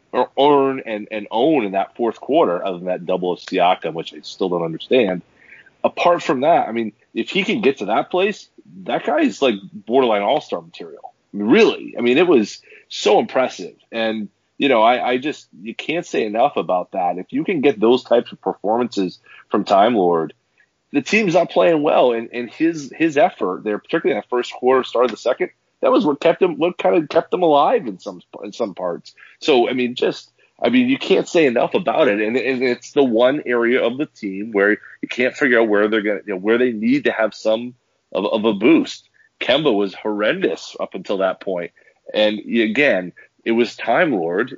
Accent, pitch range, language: American, 105-155 Hz, English